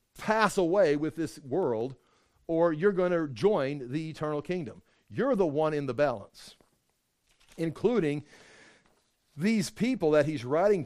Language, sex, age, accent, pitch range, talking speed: English, male, 50-69, American, 135-180 Hz, 140 wpm